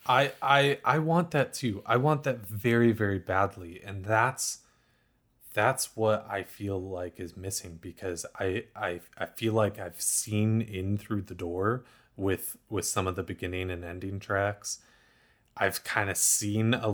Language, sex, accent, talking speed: English, male, American, 165 wpm